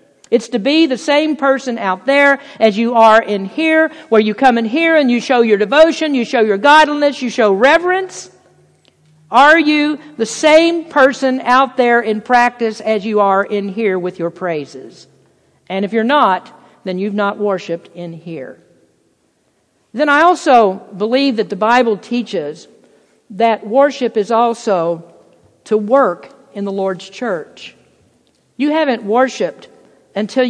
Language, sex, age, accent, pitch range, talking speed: English, female, 50-69, American, 195-245 Hz, 155 wpm